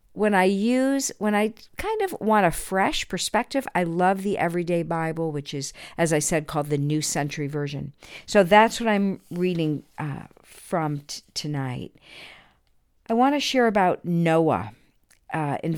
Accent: American